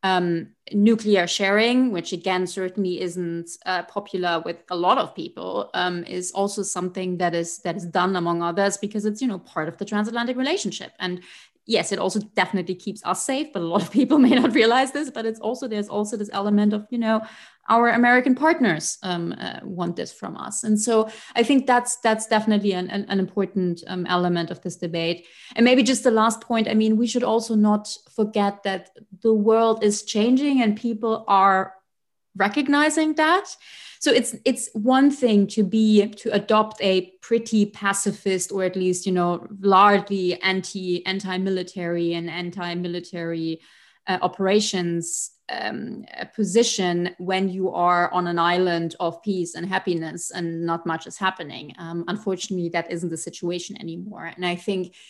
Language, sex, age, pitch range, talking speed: English, female, 30-49, 180-220 Hz, 175 wpm